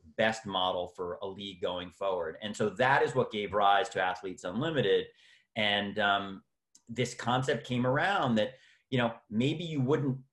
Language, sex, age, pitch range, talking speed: English, male, 30-49, 100-125 Hz, 170 wpm